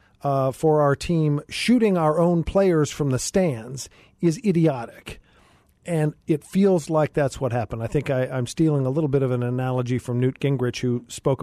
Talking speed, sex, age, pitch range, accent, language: 190 wpm, male, 40-59, 130-160 Hz, American, English